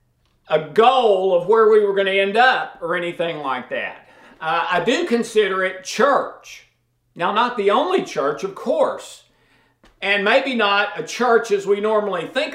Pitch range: 195-275 Hz